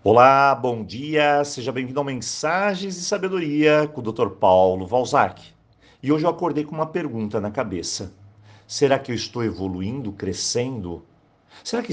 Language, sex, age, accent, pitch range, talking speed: Portuguese, male, 50-69, Brazilian, 110-160 Hz, 155 wpm